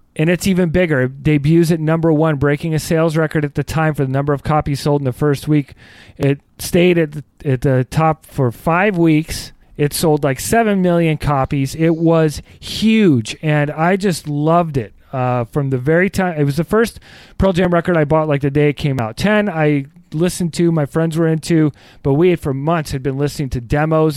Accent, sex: American, male